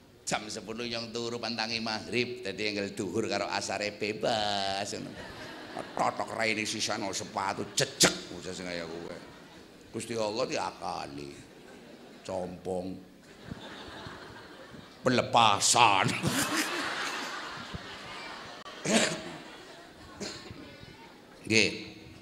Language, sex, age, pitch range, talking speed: Indonesian, male, 50-69, 110-140 Hz, 75 wpm